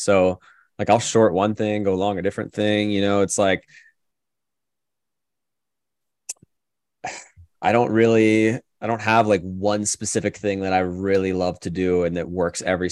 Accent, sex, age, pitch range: American, male, 20-39, 90-120 Hz